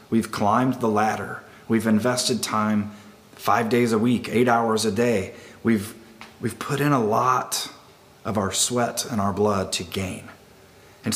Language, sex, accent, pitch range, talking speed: English, male, American, 105-130 Hz, 160 wpm